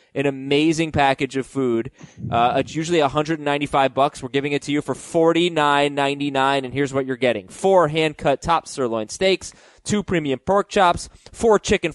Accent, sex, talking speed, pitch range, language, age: American, male, 170 wpm, 125-175 Hz, English, 20-39